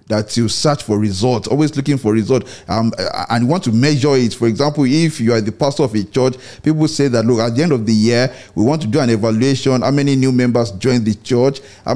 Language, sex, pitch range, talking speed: English, male, 115-145 Hz, 245 wpm